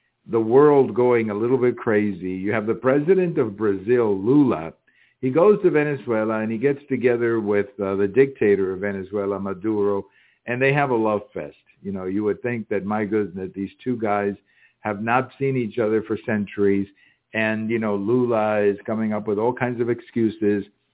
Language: English